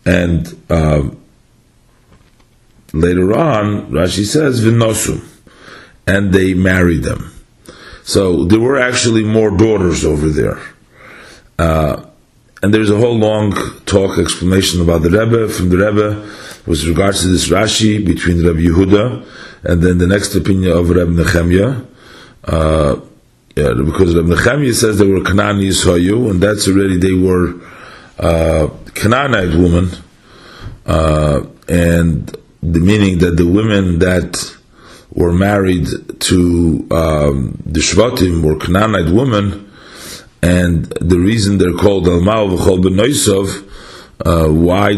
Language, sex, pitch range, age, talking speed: English, male, 85-100 Hz, 40-59, 120 wpm